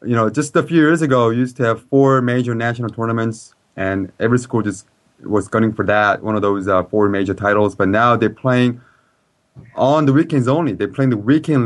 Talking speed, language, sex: 220 wpm, English, male